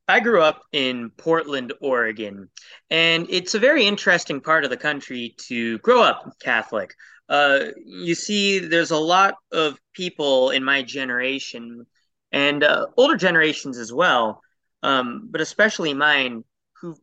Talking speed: 145 wpm